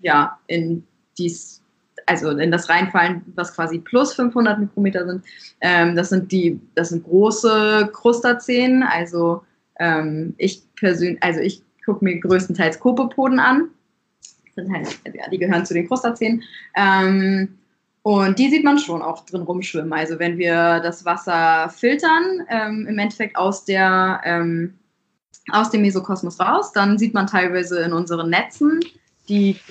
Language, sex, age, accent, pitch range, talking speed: German, female, 20-39, German, 170-215 Hz, 145 wpm